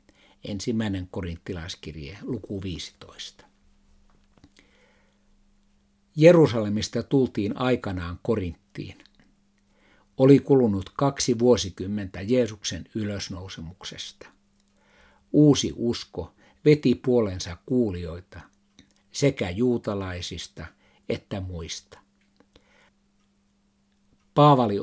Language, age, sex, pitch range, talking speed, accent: Finnish, 60-79, male, 90-120 Hz, 60 wpm, native